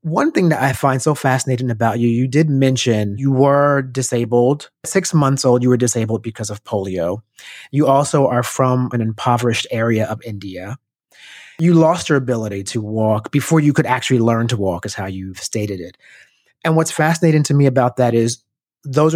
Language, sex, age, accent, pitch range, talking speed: English, male, 30-49, American, 115-155 Hz, 190 wpm